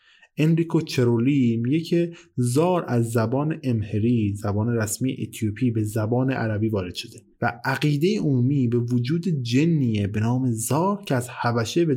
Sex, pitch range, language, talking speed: male, 110-135 Hz, Persian, 145 wpm